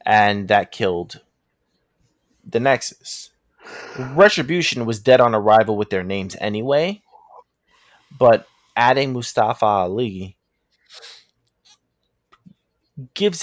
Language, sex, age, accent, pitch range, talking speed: English, male, 20-39, American, 100-130 Hz, 85 wpm